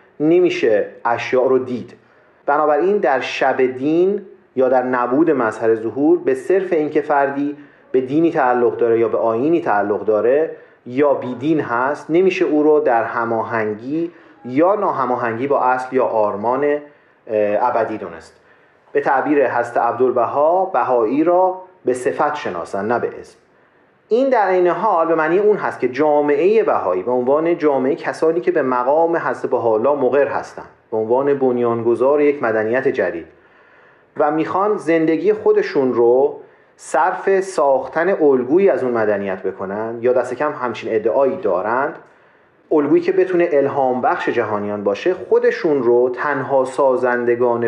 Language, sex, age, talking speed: Persian, male, 40-59, 140 wpm